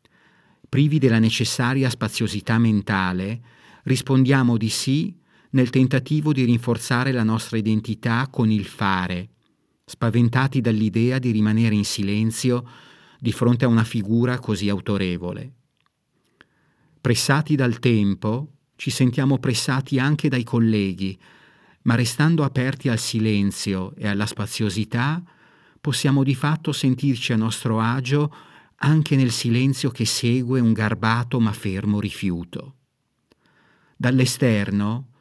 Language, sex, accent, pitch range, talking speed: Italian, male, native, 110-140 Hz, 110 wpm